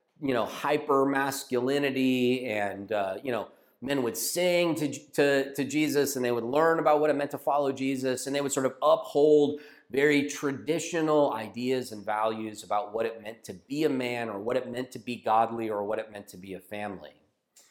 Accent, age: American, 40-59